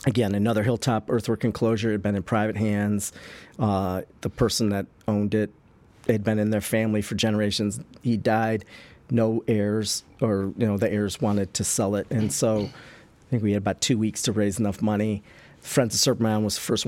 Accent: American